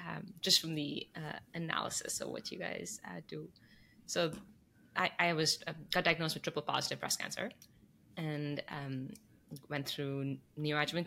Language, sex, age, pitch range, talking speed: English, female, 20-39, 140-170 Hz, 155 wpm